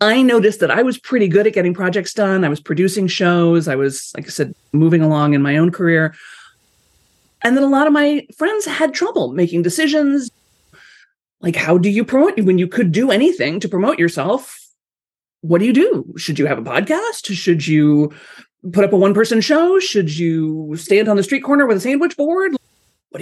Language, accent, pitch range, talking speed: English, American, 160-250 Hz, 200 wpm